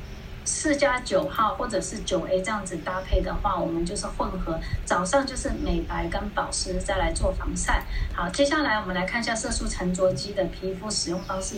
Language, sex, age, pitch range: Chinese, female, 20-39, 185-270 Hz